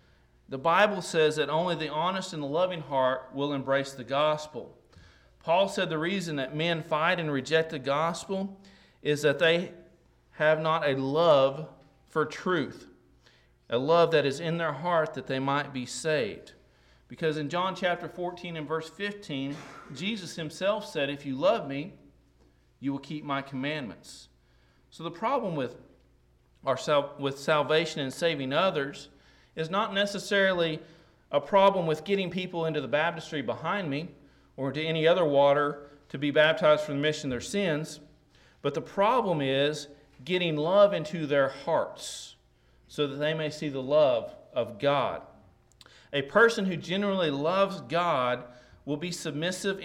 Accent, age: American, 40-59